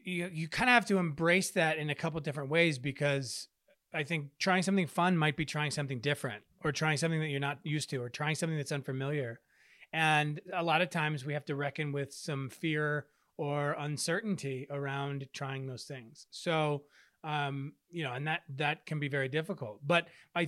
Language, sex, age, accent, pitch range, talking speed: English, male, 30-49, American, 145-175 Hz, 200 wpm